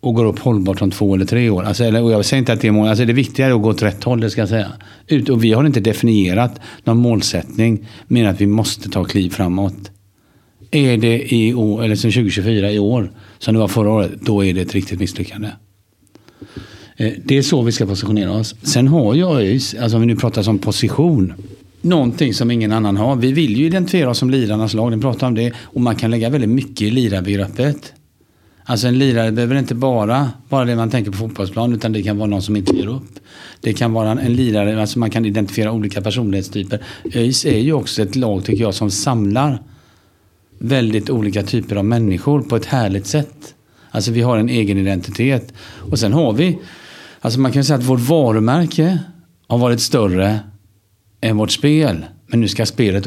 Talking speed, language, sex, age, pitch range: 205 wpm, Swedish, male, 50-69, 105-125 Hz